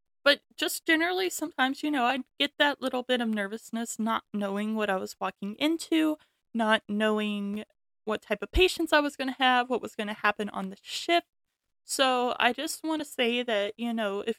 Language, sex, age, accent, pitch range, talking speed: English, female, 20-39, American, 215-260 Hz, 205 wpm